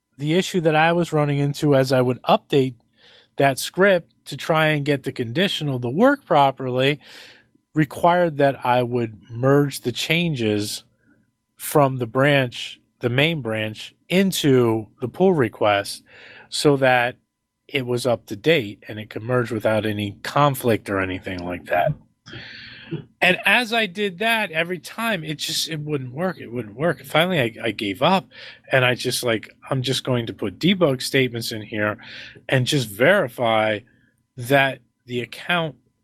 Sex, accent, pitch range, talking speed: male, American, 115-155 Hz, 160 wpm